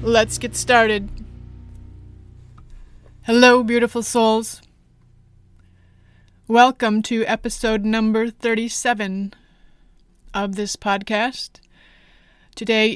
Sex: female